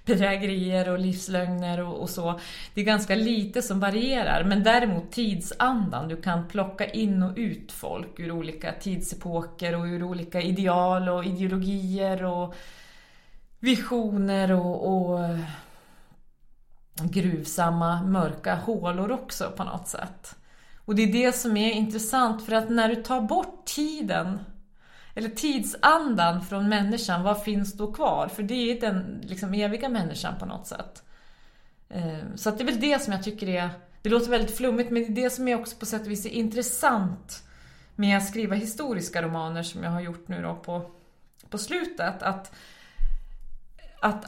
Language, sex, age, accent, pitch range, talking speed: English, female, 30-49, Swedish, 175-220 Hz, 160 wpm